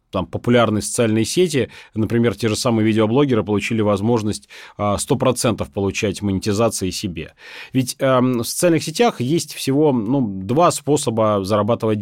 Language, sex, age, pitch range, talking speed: Russian, male, 30-49, 110-135 Hz, 120 wpm